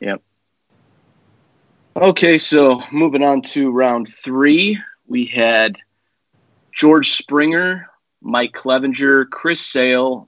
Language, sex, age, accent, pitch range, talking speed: English, male, 30-49, American, 120-145 Hz, 95 wpm